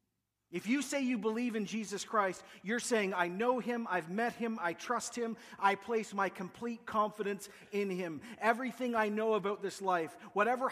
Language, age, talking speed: English, 40-59, 185 wpm